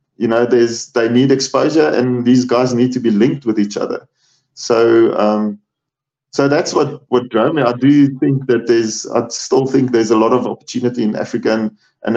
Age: 20-39